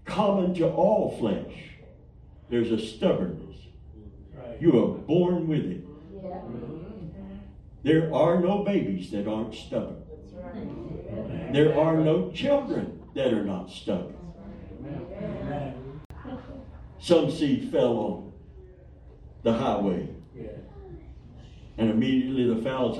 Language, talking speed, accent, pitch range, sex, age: English, 95 wpm, American, 95-135 Hz, male, 60-79